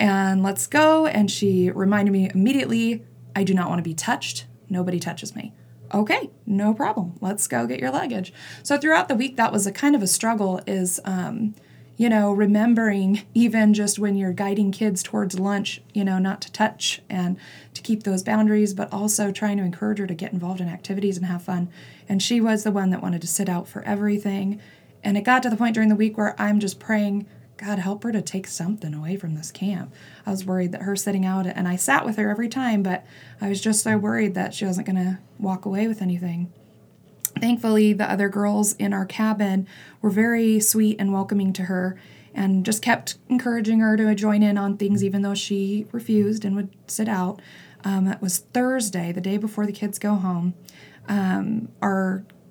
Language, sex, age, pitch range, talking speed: English, female, 20-39, 190-215 Hz, 210 wpm